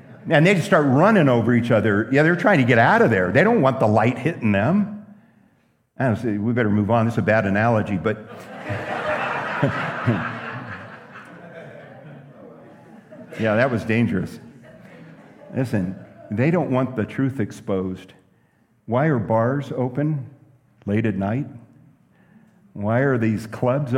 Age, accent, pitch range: 50-69, American, 105-140 Hz